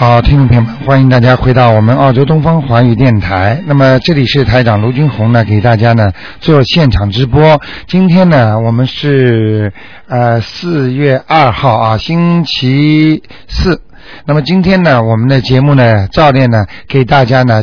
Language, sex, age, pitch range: Chinese, male, 50-69, 125-165 Hz